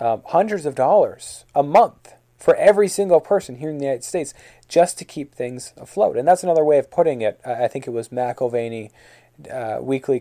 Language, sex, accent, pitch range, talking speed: English, male, American, 115-150 Hz, 200 wpm